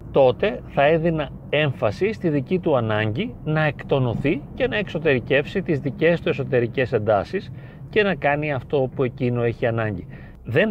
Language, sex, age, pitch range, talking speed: Greek, male, 40-59, 125-175 Hz, 150 wpm